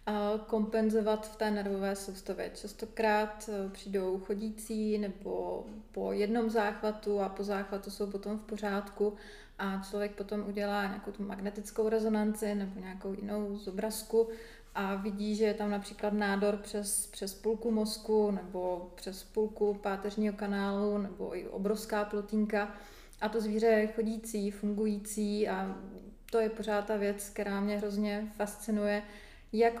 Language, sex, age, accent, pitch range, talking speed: Czech, female, 30-49, native, 205-220 Hz, 140 wpm